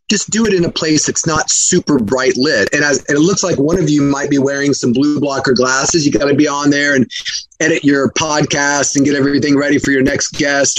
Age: 30-49